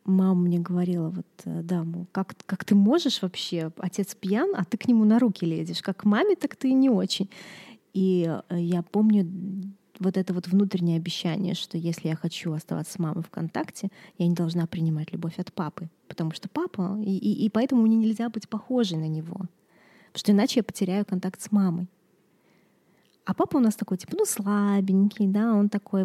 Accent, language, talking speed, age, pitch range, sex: native, Russian, 190 wpm, 20-39, 180-215 Hz, female